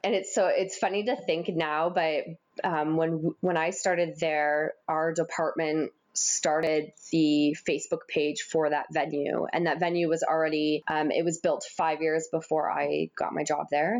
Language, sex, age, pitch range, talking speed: English, female, 20-39, 150-170 Hz, 175 wpm